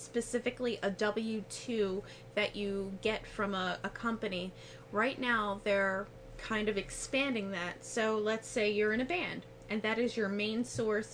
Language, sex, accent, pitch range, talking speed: English, female, American, 195-230 Hz, 160 wpm